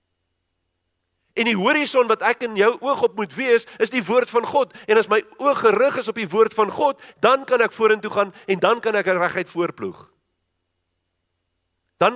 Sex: male